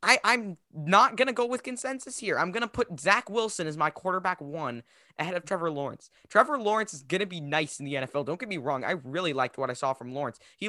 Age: 20-39